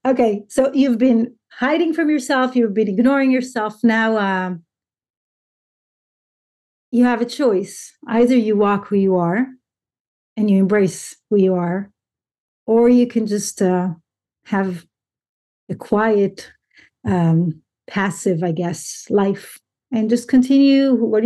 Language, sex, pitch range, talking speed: English, female, 195-240 Hz, 130 wpm